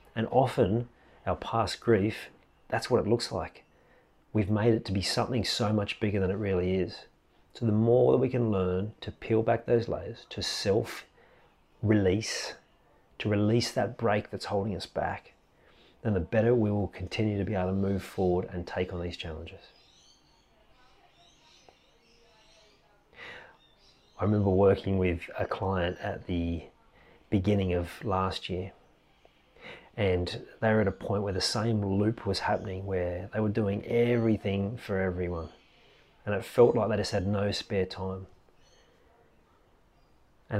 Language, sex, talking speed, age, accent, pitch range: English, male, 155 wpm, 40-59, Australian, 90-110 Hz